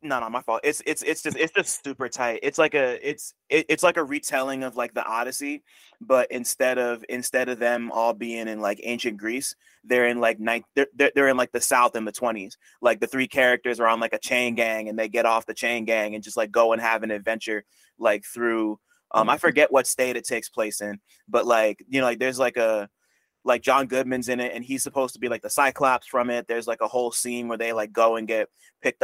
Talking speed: 250 wpm